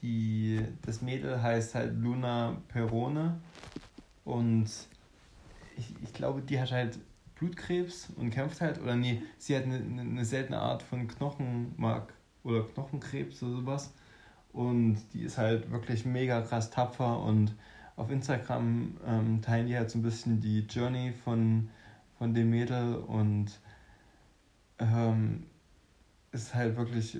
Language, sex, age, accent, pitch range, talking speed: German, male, 20-39, German, 110-120 Hz, 135 wpm